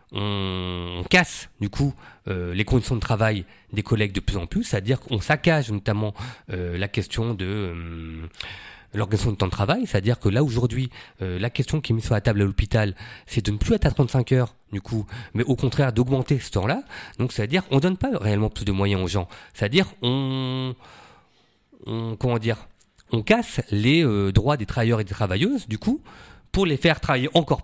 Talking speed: 190 wpm